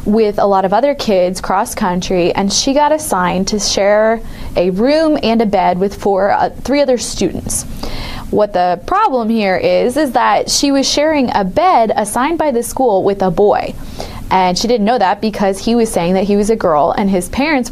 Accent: American